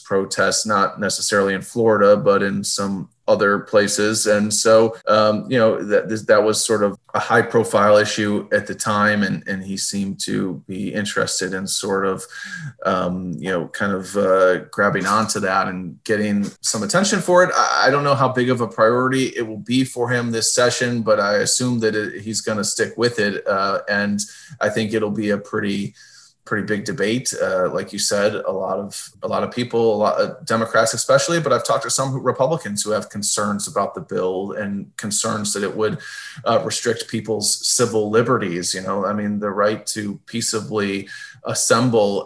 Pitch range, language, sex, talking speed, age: 100-110 Hz, English, male, 195 wpm, 20-39